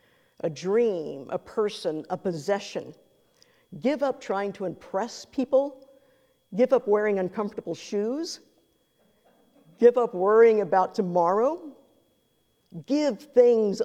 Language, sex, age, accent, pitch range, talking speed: English, female, 50-69, American, 180-240 Hz, 105 wpm